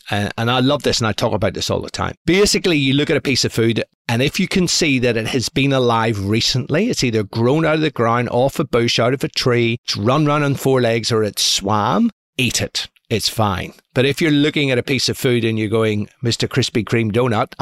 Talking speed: 250 wpm